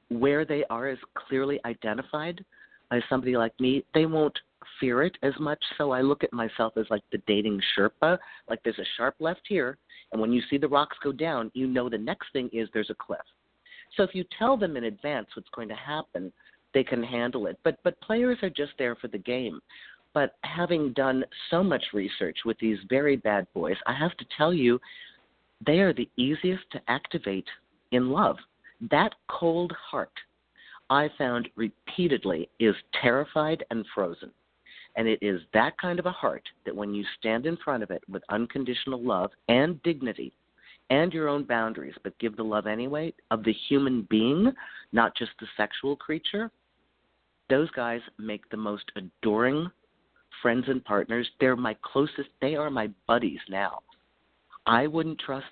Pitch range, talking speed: 115-155 Hz, 180 wpm